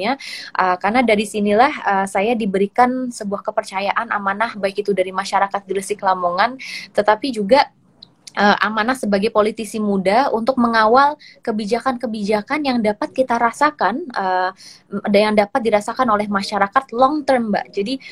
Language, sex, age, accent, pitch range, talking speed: Indonesian, female, 20-39, native, 200-235 Hz, 125 wpm